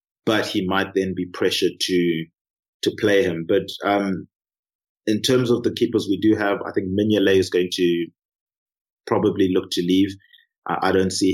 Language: English